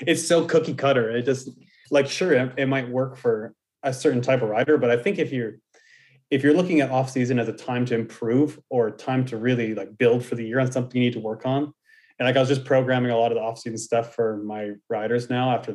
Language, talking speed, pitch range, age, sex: English, 260 wpm, 115-135 Hz, 30-49, male